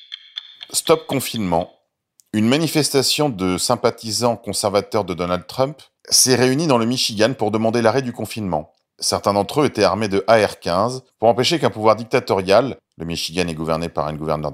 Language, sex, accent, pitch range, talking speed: French, male, French, 100-130 Hz, 160 wpm